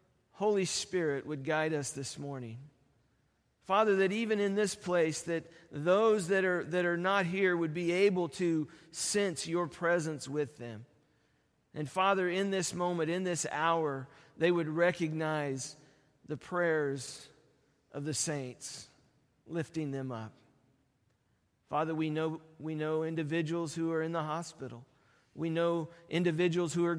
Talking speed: 145 wpm